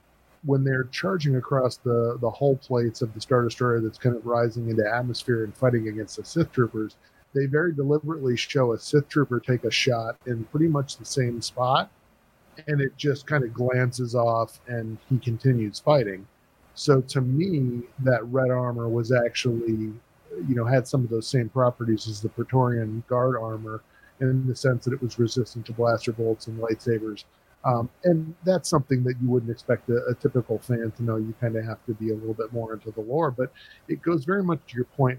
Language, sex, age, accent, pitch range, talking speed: English, male, 40-59, American, 115-130 Hz, 205 wpm